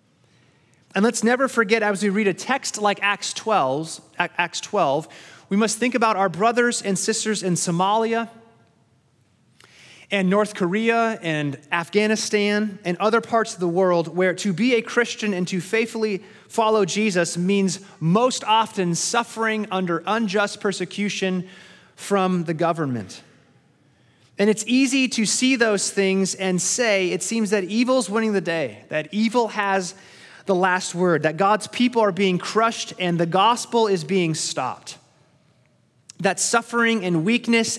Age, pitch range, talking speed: 30-49, 170-220 Hz, 150 wpm